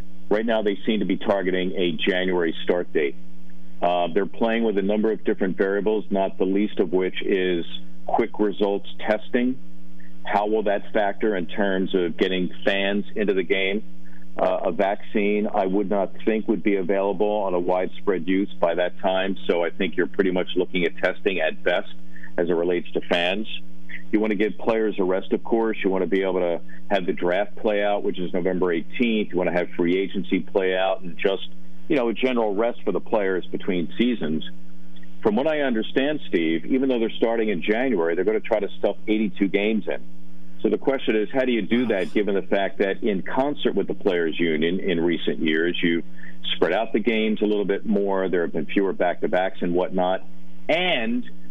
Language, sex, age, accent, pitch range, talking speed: English, male, 50-69, American, 80-105 Hz, 210 wpm